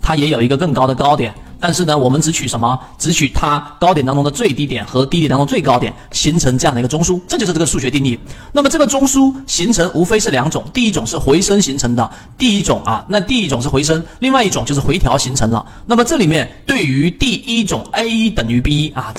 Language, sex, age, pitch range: Chinese, male, 40-59, 135-180 Hz